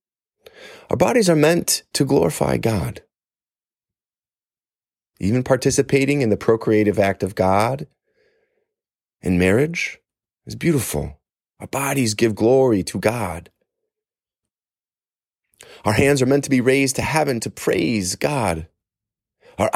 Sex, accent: male, American